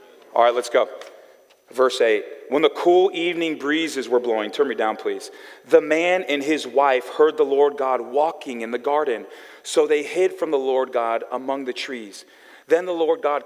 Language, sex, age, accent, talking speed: English, male, 40-59, American, 195 wpm